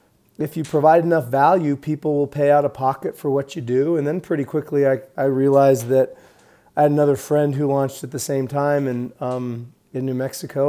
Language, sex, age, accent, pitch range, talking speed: English, male, 30-49, American, 130-155 Hz, 215 wpm